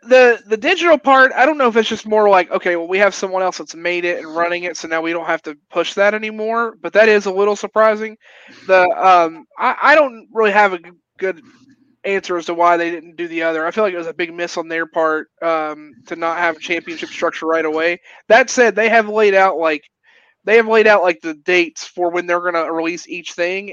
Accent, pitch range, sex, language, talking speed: American, 165-200 Hz, male, English, 250 wpm